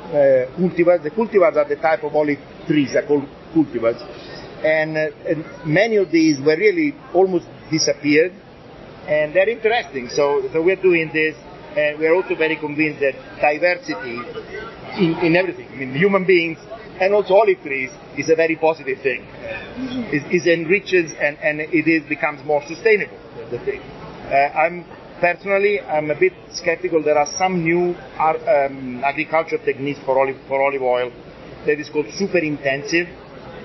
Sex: male